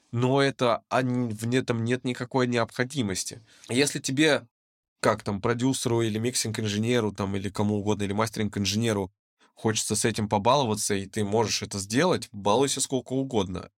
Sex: male